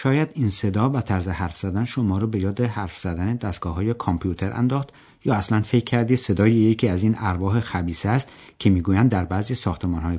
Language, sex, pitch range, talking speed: Persian, male, 90-125 Hz, 195 wpm